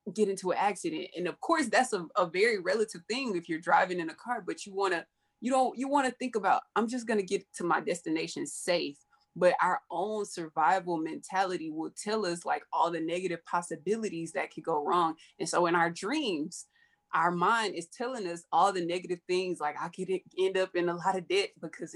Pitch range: 180-260 Hz